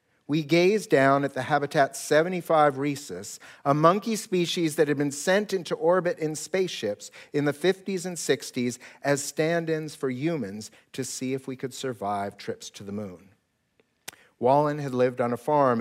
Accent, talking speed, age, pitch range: American, 165 wpm, 50-69, 120-165 Hz